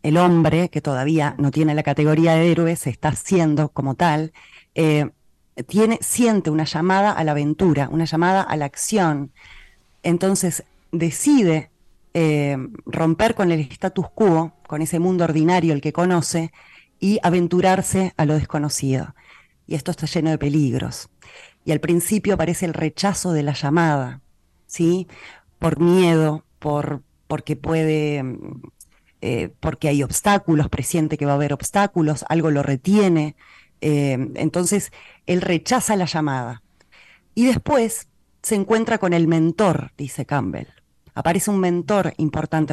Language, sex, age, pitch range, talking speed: Spanish, female, 20-39, 150-180 Hz, 140 wpm